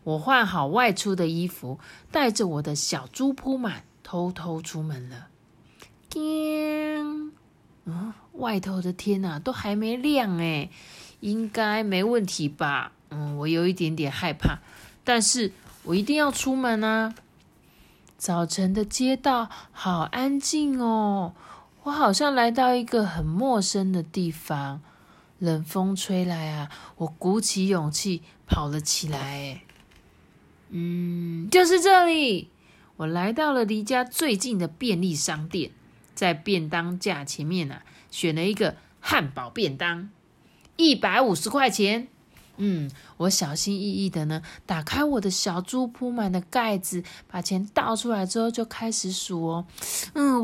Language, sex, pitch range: Chinese, female, 170-250 Hz